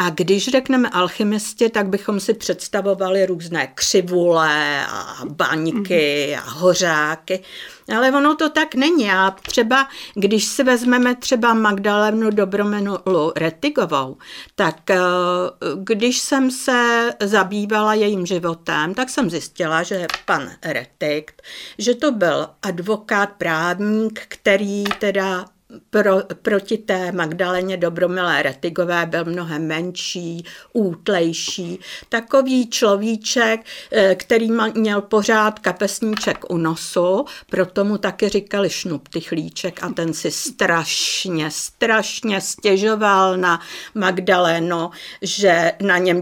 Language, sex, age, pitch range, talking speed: Czech, female, 50-69, 175-220 Hz, 110 wpm